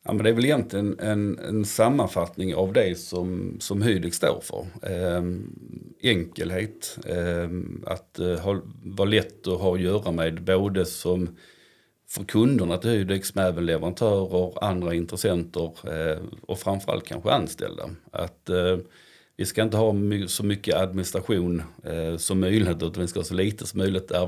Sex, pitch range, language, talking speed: male, 90-100 Hz, Swedish, 165 wpm